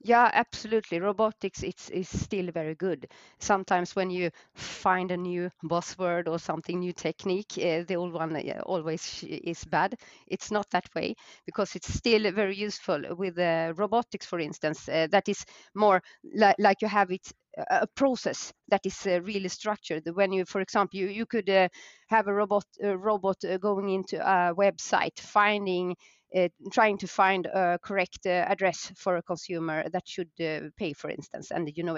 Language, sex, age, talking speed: Swedish, female, 30-49, 175 wpm